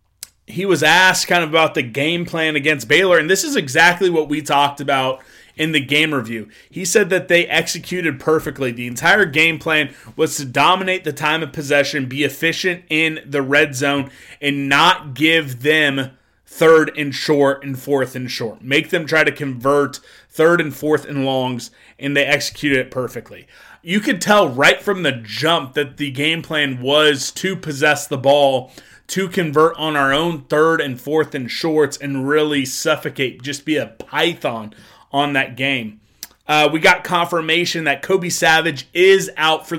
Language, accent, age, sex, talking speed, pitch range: English, American, 30-49, male, 180 wpm, 140-170 Hz